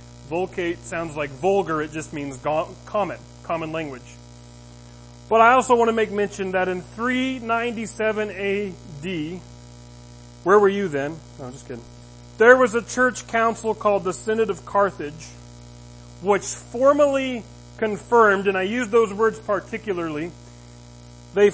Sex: male